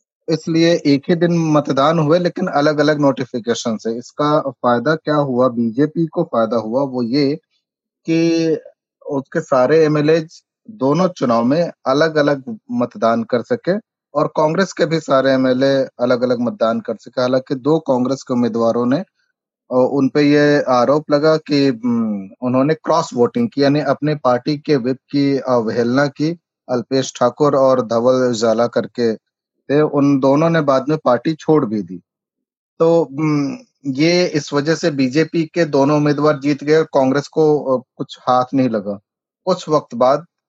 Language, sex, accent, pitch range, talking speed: Hindi, male, native, 125-155 Hz, 150 wpm